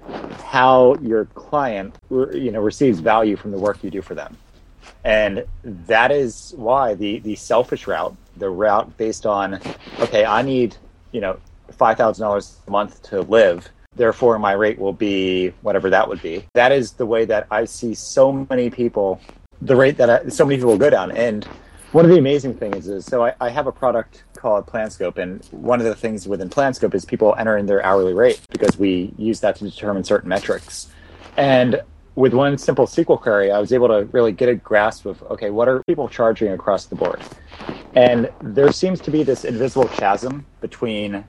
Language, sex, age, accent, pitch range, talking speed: English, male, 30-49, American, 95-120 Hz, 195 wpm